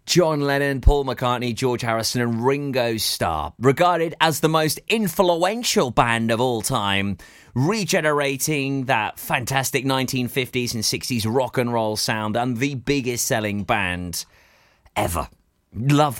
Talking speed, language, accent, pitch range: 130 wpm, English, British, 110-140 Hz